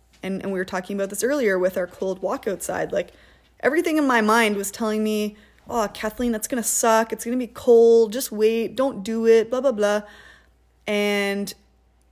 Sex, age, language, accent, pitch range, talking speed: female, 20-39, English, American, 185-220 Hz, 205 wpm